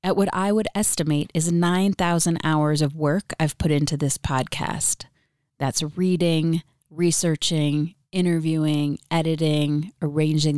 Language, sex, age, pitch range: English, female, 30-49, 145-170 Hz